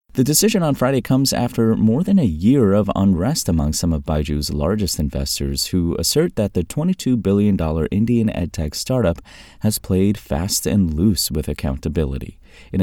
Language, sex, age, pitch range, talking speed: English, male, 30-49, 75-105 Hz, 165 wpm